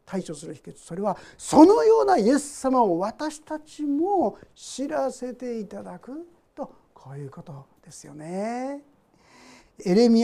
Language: Japanese